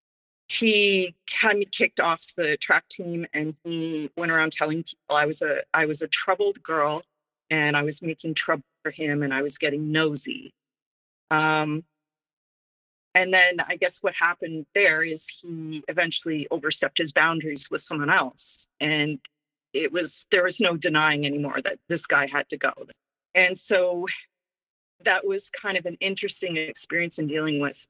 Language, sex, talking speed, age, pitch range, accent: English, female, 165 wpm, 40-59, 150-180 Hz, American